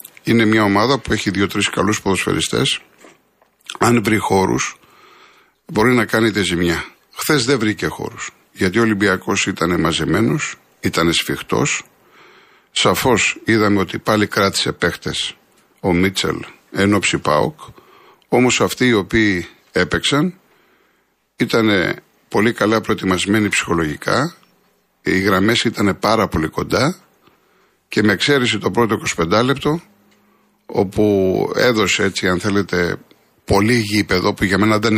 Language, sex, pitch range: Greek, male, 95-115 Hz